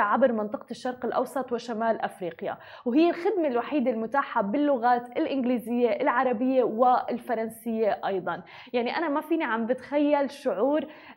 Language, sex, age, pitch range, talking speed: Arabic, female, 20-39, 225-275 Hz, 120 wpm